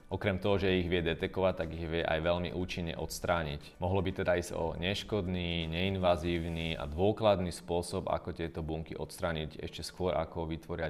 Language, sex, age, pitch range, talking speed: Slovak, male, 30-49, 85-100 Hz, 170 wpm